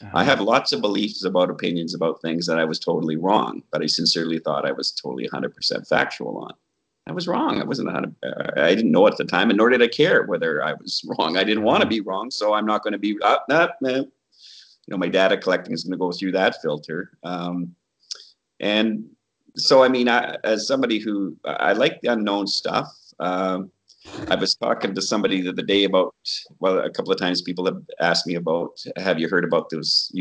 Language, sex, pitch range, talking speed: English, male, 90-110 Hz, 220 wpm